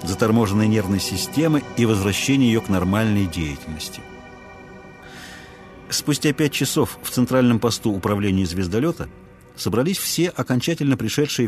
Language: Russian